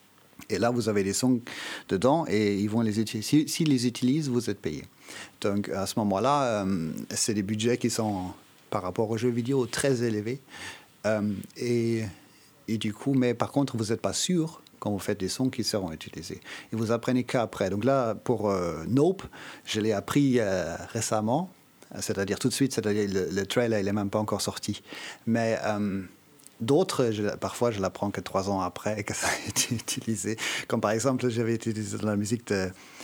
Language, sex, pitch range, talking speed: French, male, 100-120 Hz, 200 wpm